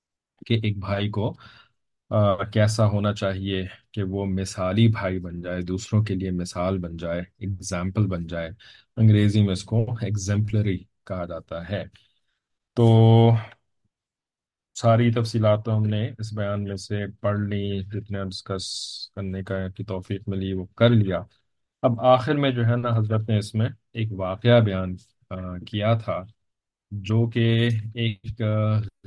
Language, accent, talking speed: English, Indian, 130 wpm